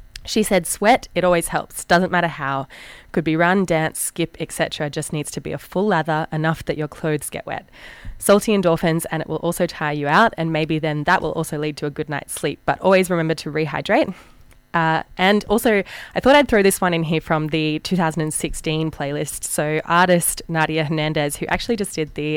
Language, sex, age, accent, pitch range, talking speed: English, female, 20-39, Australian, 150-175 Hz, 210 wpm